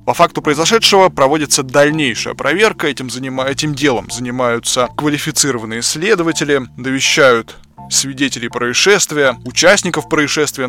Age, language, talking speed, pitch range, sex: 20-39, Russian, 95 wpm, 125-170 Hz, male